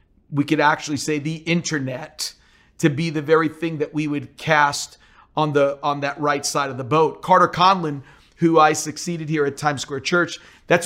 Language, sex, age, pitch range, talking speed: English, male, 40-59, 145-170 Hz, 195 wpm